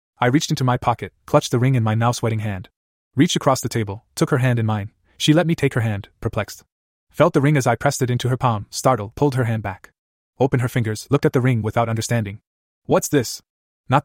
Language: English